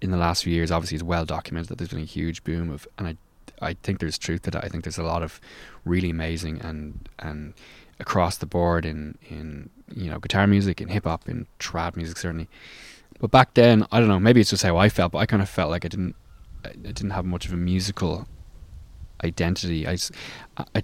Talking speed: 230 wpm